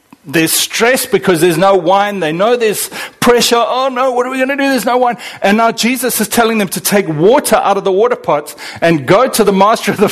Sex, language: male, English